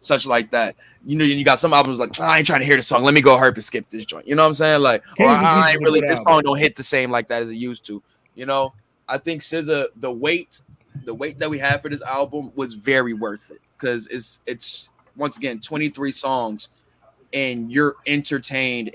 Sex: male